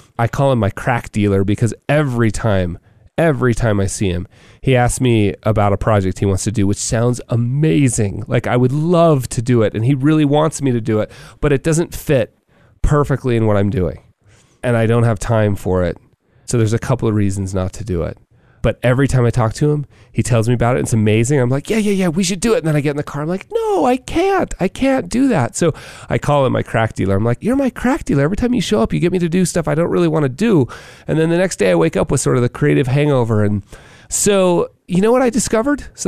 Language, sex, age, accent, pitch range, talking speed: English, male, 30-49, American, 110-180 Hz, 265 wpm